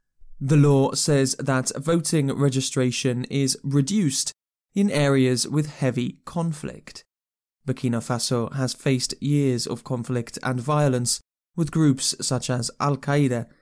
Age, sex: 20-39, male